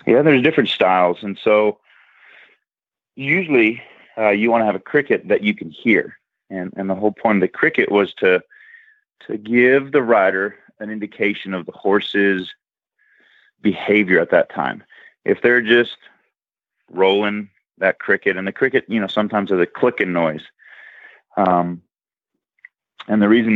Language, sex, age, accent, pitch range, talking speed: English, male, 30-49, American, 95-115 Hz, 155 wpm